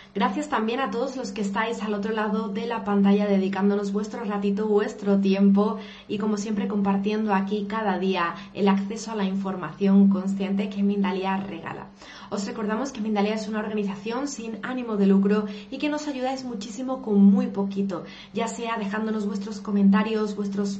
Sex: female